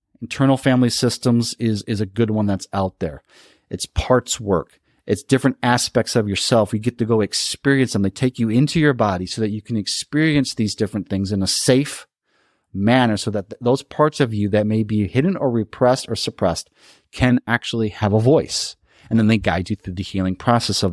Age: 40-59